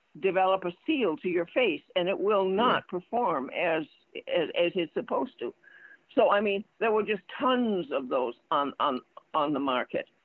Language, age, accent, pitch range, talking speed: English, 60-79, American, 175-245 Hz, 180 wpm